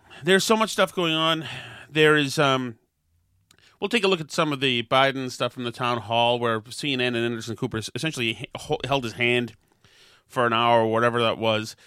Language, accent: English, American